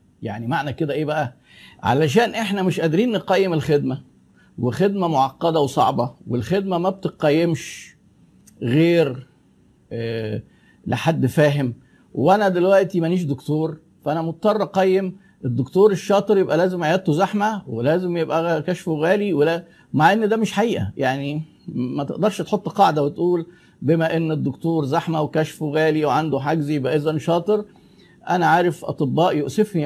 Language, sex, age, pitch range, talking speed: Arabic, male, 50-69, 140-185 Hz, 130 wpm